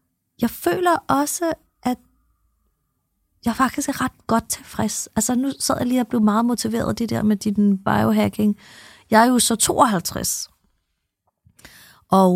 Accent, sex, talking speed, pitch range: native, female, 145 wpm, 200-250 Hz